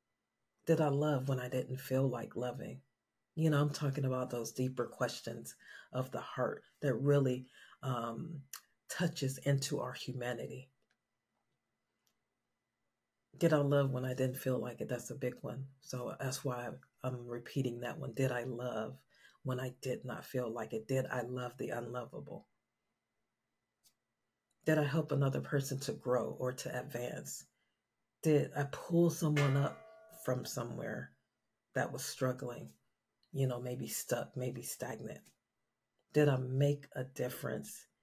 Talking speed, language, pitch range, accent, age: 145 wpm, English, 125-145 Hz, American, 40-59